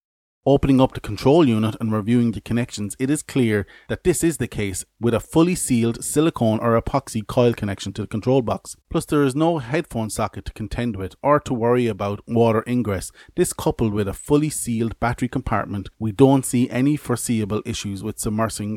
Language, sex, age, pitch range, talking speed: English, male, 30-49, 105-130 Hz, 195 wpm